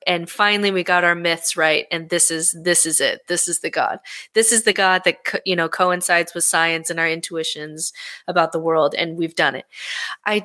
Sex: female